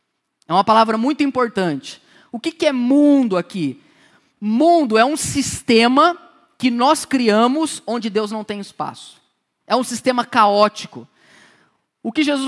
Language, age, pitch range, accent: Portuguese, 10-29, 225-280 Hz, Brazilian